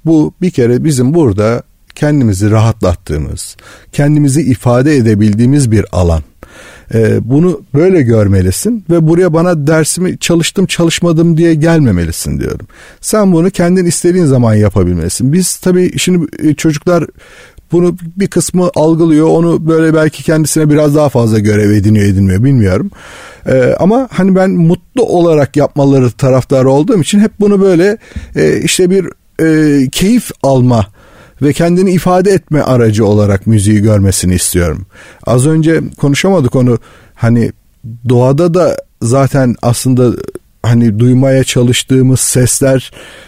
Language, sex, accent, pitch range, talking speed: Turkish, male, native, 105-160 Hz, 120 wpm